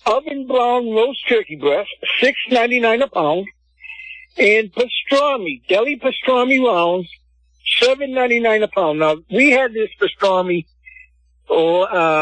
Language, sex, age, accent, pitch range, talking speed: English, male, 60-79, American, 155-235 Hz, 115 wpm